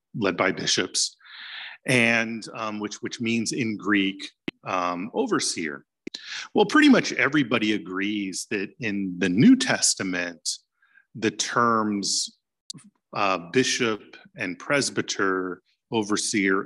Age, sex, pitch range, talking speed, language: 40-59, male, 100-150 Hz, 105 wpm, English